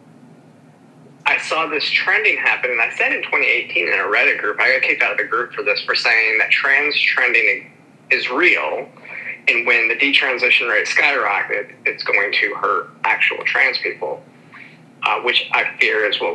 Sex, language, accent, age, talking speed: male, English, American, 30-49, 180 wpm